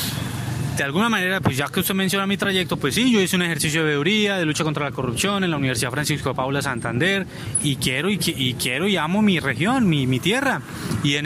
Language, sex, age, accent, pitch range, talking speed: Spanish, male, 20-39, Colombian, 145-200 Hz, 225 wpm